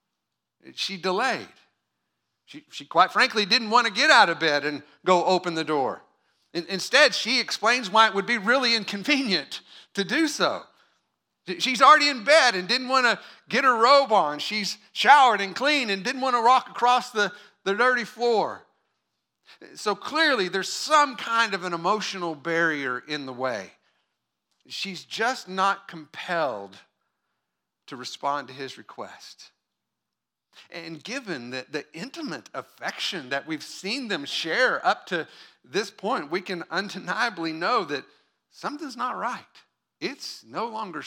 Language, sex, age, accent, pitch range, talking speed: English, male, 50-69, American, 165-250 Hz, 150 wpm